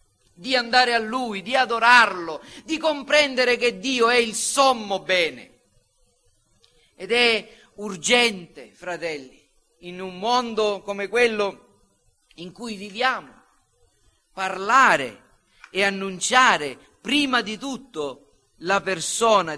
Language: Italian